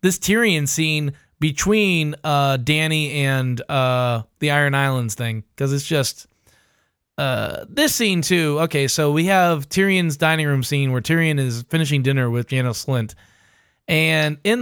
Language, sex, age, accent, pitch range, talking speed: English, male, 20-39, American, 125-155 Hz, 150 wpm